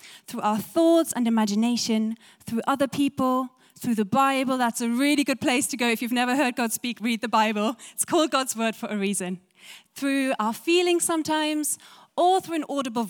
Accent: German